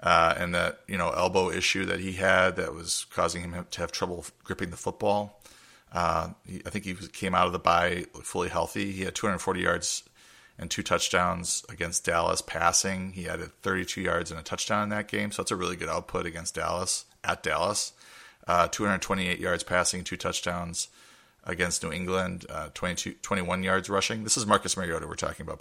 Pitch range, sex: 85-95 Hz, male